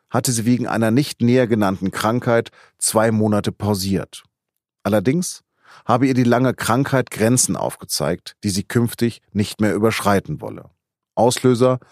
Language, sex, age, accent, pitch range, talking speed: German, male, 40-59, German, 105-130 Hz, 135 wpm